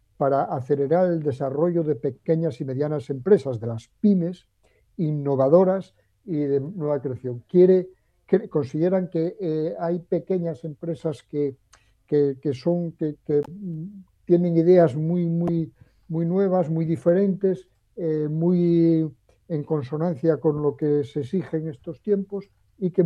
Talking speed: 135 wpm